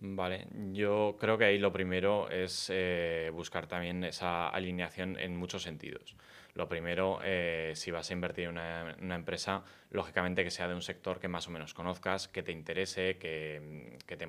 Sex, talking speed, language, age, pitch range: male, 185 wpm, Spanish, 20-39, 85-95 Hz